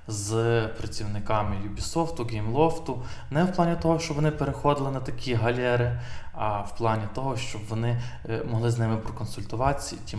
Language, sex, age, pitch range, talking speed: Ukrainian, male, 20-39, 100-120 Hz, 155 wpm